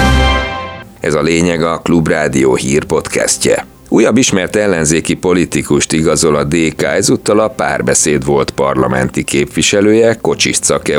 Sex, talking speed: male, 115 wpm